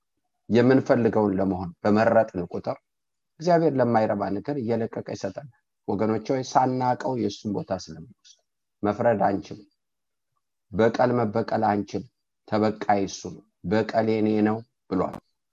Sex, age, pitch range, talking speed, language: male, 50-69, 100-145 Hz, 110 wpm, English